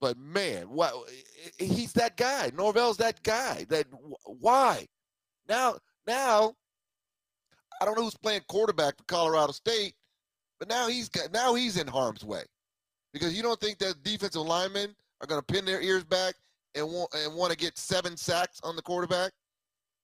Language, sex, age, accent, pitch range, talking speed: English, male, 30-49, American, 135-185 Hz, 165 wpm